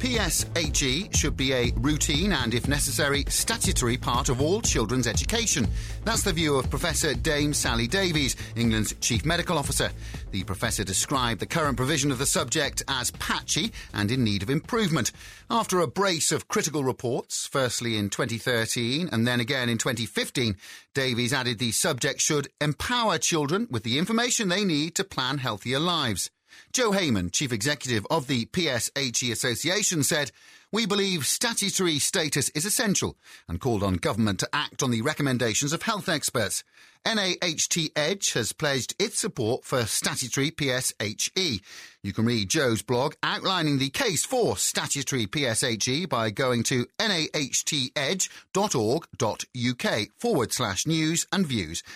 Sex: male